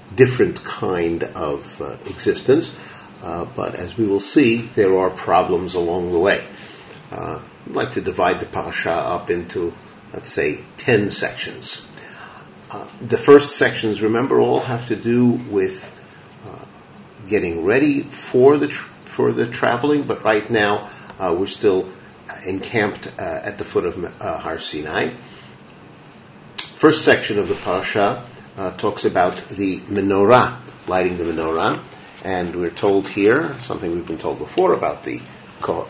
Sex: male